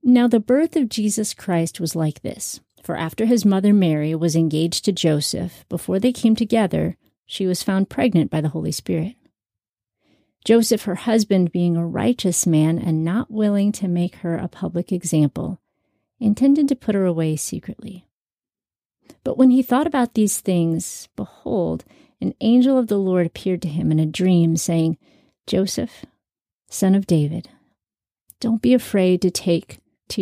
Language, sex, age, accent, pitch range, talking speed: English, female, 40-59, American, 165-220 Hz, 165 wpm